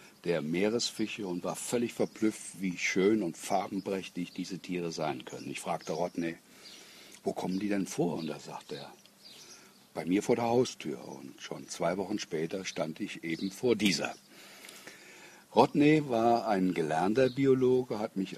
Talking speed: 155 wpm